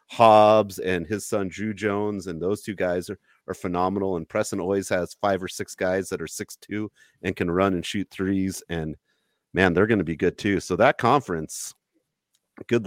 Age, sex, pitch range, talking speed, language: 30-49, male, 90-110 Hz, 195 wpm, English